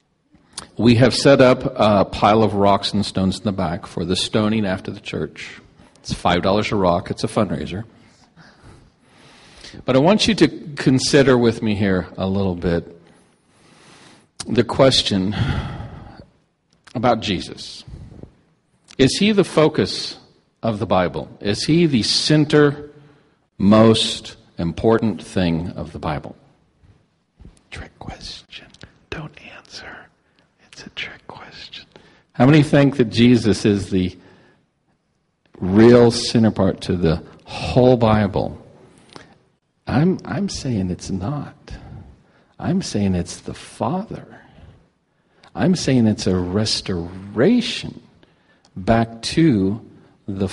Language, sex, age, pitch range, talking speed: English, male, 50-69, 100-145 Hz, 115 wpm